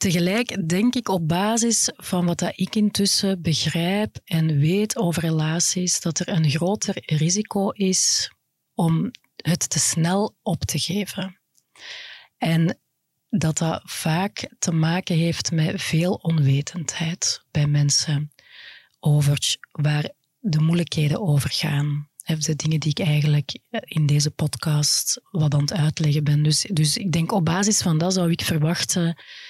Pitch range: 150-185 Hz